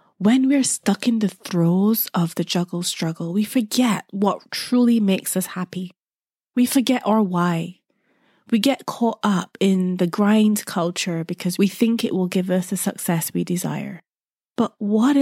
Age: 20-39